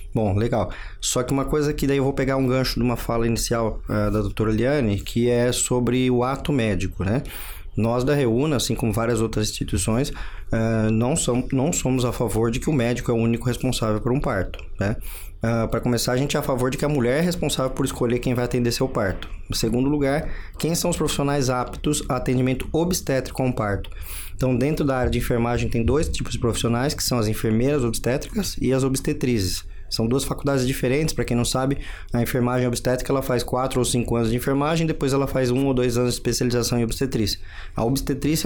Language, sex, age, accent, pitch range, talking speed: Portuguese, male, 20-39, Brazilian, 115-135 Hz, 215 wpm